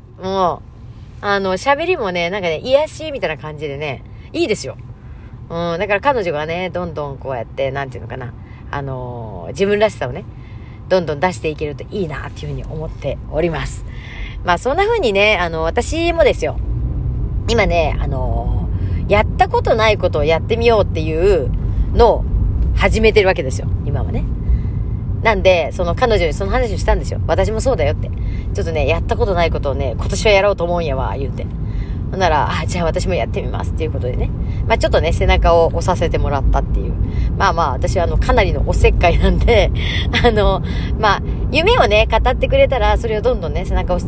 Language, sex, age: Japanese, female, 40-59